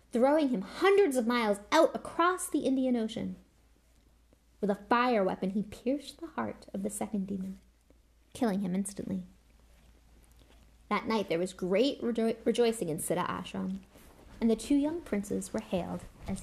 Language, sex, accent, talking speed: English, female, American, 155 wpm